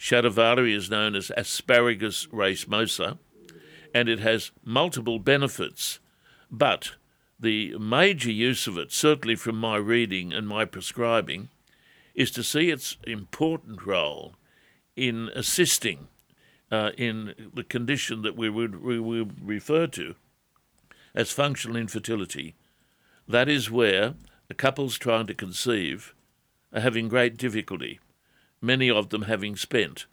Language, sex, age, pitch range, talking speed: English, male, 60-79, 105-125 Hz, 125 wpm